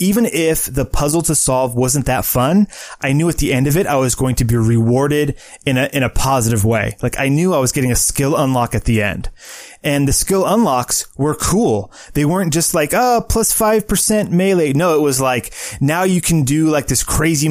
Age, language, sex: 20-39, English, male